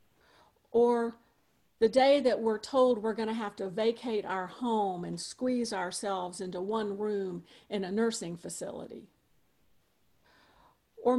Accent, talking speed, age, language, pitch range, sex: American, 135 wpm, 50-69, English, 185-230 Hz, female